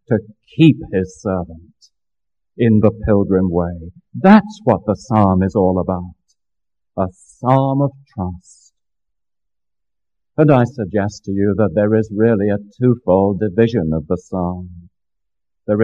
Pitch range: 90-120 Hz